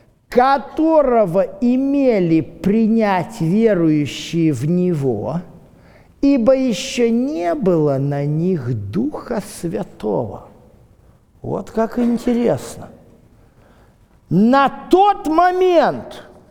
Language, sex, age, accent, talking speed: Russian, male, 50-69, native, 75 wpm